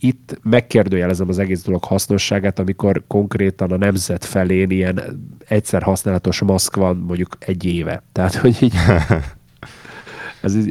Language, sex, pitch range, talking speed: Hungarian, male, 90-105 Hz, 130 wpm